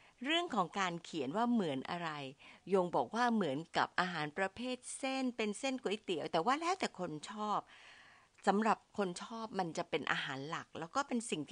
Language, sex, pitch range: Thai, female, 160-220 Hz